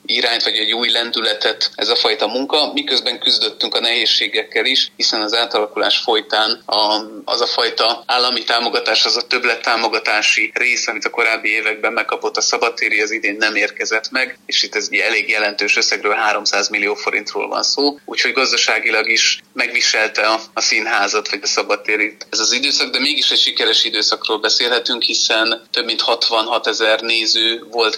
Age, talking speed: 30-49, 165 wpm